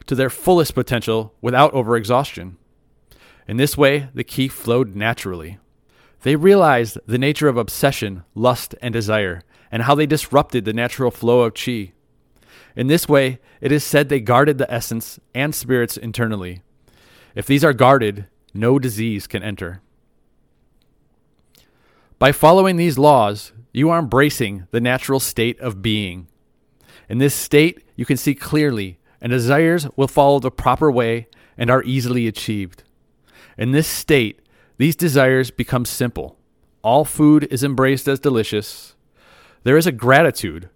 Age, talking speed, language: 30-49, 145 wpm, English